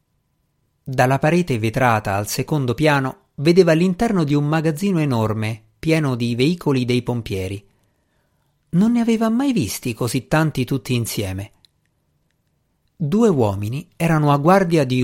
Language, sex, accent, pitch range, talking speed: Italian, male, native, 115-170 Hz, 130 wpm